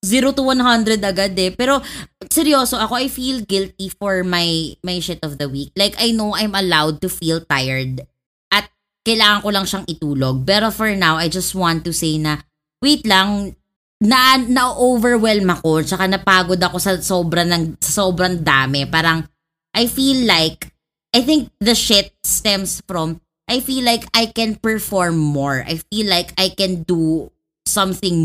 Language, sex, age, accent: English, female, 20-39, Filipino